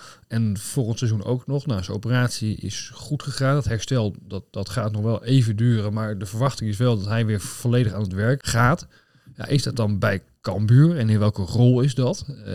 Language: Dutch